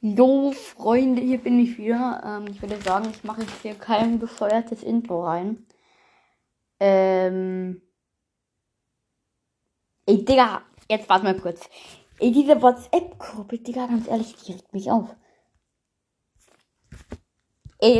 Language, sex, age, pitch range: German, female, 20-39, 205-260 Hz